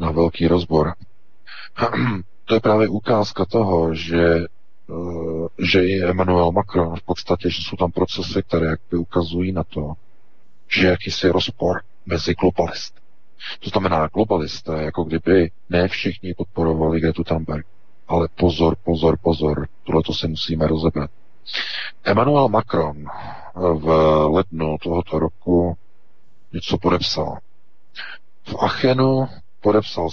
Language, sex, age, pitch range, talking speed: Czech, male, 40-59, 80-95 Hz, 120 wpm